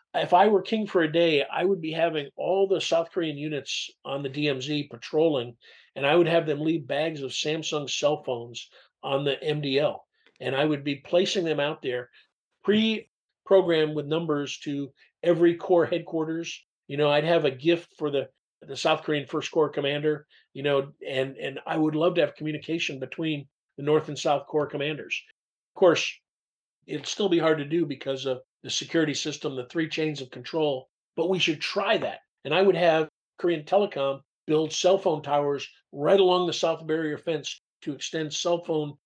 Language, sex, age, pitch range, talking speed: English, male, 50-69, 140-170 Hz, 190 wpm